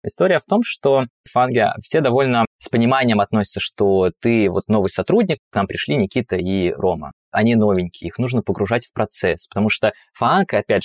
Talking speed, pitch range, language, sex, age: 170 wpm, 100-115 Hz, Russian, male, 20-39